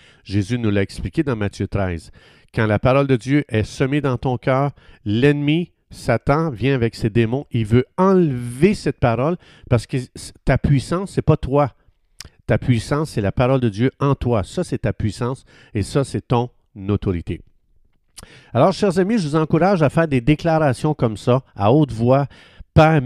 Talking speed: 180 wpm